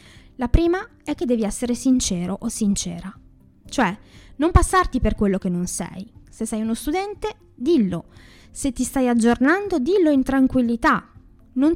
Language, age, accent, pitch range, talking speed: Italian, 20-39, native, 200-270 Hz, 155 wpm